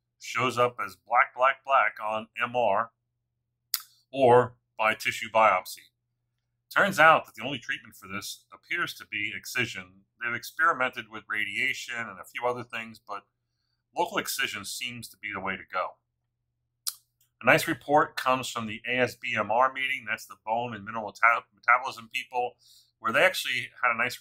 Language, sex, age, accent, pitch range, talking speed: English, male, 40-59, American, 105-120 Hz, 160 wpm